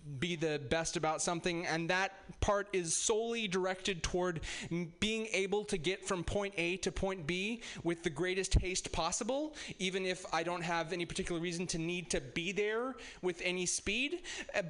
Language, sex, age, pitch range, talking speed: English, male, 20-39, 165-200 Hz, 185 wpm